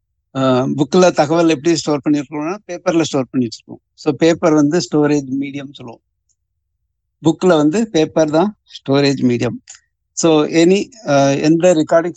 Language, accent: Tamil, native